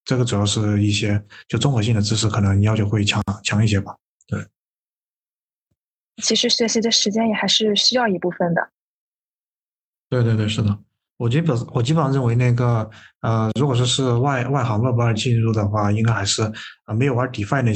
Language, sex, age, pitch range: Chinese, male, 20-39, 105-125 Hz